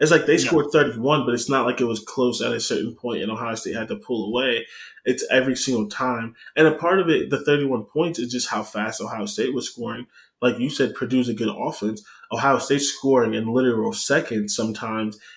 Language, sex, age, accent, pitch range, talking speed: English, male, 20-39, American, 115-140 Hz, 225 wpm